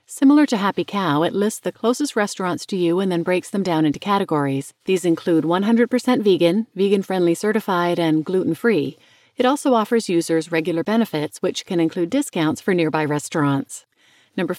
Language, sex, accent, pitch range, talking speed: English, female, American, 165-220 Hz, 170 wpm